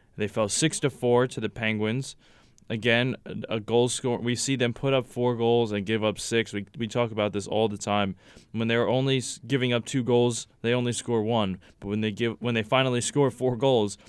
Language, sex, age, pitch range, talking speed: English, male, 20-39, 105-125 Hz, 225 wpm